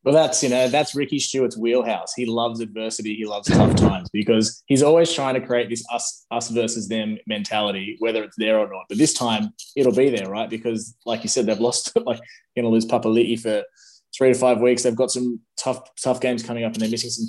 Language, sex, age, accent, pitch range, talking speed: English, male, 20-39, Australian, 110-130 Hz, 240 wpm